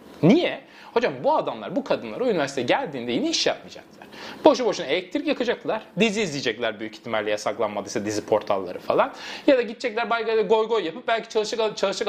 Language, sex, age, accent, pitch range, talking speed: Turkish, male, 30-49, native, 185-260 Hz, 160 wpm